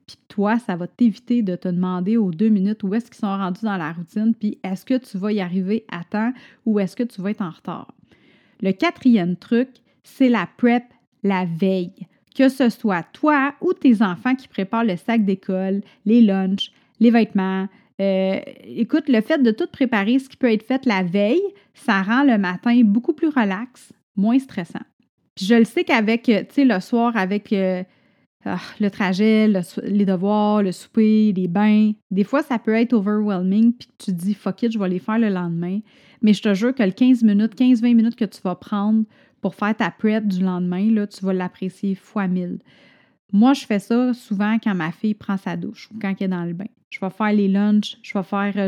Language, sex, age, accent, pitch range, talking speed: French, female, 30-49, Canadian, 195-235 Hz, 210 wpm